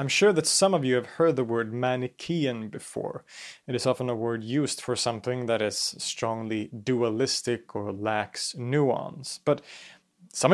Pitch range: 115-150 Hz